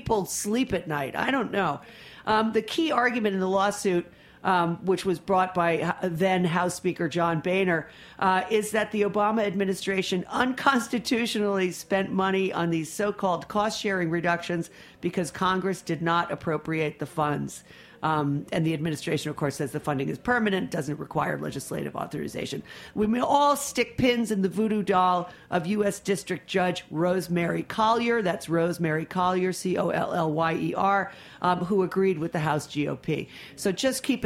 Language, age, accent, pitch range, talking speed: English, 40-59, American, 165-215 Hz, 155 wpm